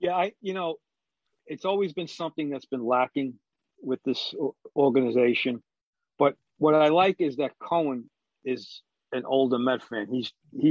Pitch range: 130-175 Hz